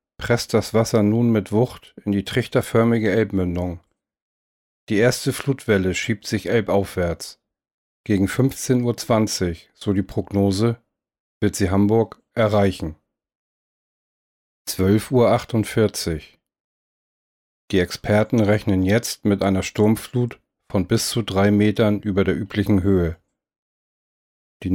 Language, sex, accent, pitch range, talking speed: German, male, German, 95-115 Hz, 110 wpm